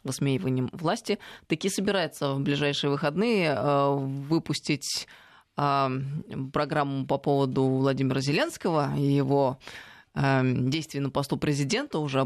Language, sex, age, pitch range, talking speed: Russian, female, 20-39, 140-180 Hz, 100 wpm